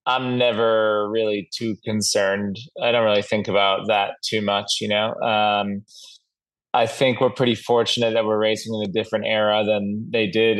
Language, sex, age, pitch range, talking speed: English, male, 20-39, 100-120 Hz, 175 wpm